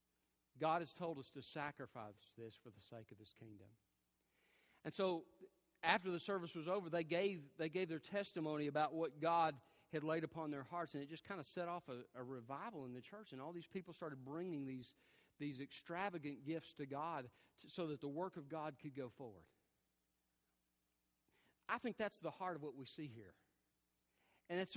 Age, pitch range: 40-59, 125-185 Hz